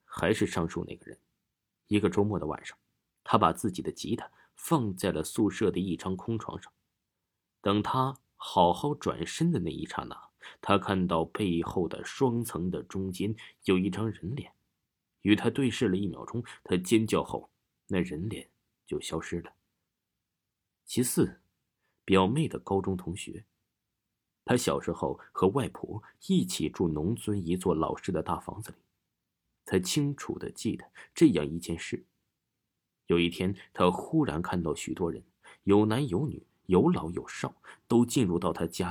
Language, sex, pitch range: Chinese, male, 85-110 Hz